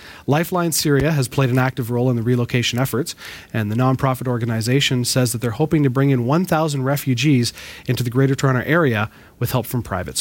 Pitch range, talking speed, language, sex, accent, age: 115-155 Hz, 195 wpm, English, male, American, 30-49